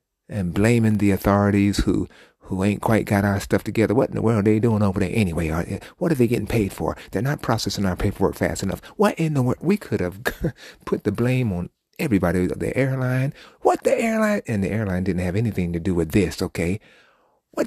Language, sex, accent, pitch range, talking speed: English, male, American, 95-130 Hz, 215 wpm